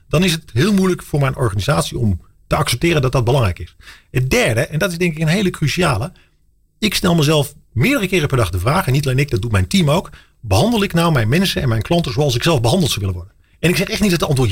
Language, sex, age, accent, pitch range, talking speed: Dutch, male, 40-59, Dutch, 105-150 Hz, 275 wpm